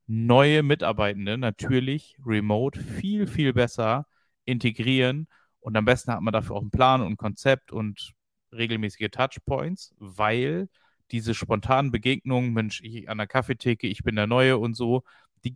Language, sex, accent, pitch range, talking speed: German, male, German, 110-125 Hz, 150 wpm